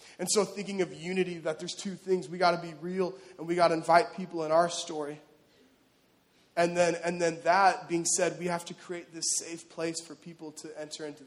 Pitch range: 155-180 Hz